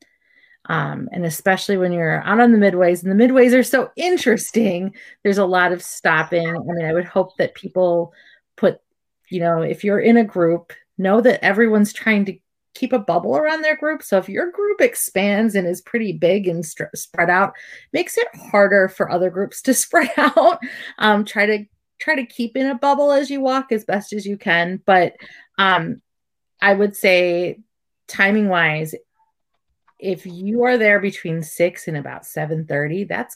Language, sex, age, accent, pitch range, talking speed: English, female, 30-49, American, 165-230 Hz, 185 wpm